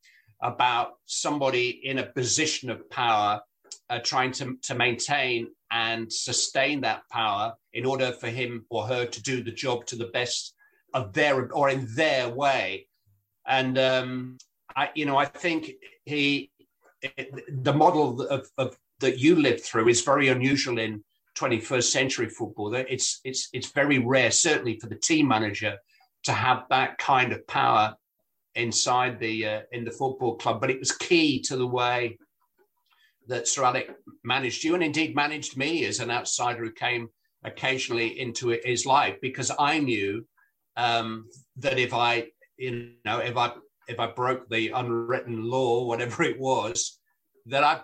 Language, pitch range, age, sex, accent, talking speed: English, 120-140 Hz, 50-69, male, British, 160 wpm